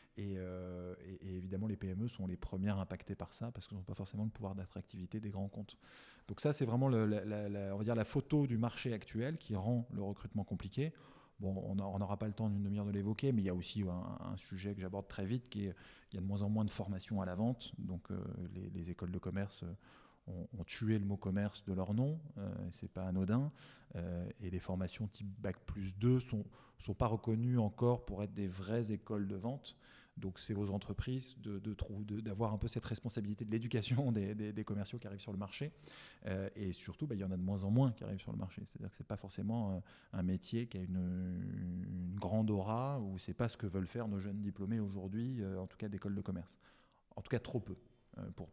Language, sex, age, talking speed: French, male, 20-39, 250 wpm